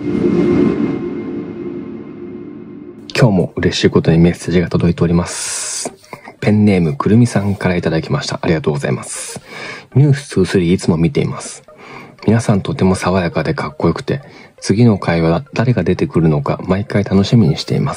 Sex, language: male, Japanese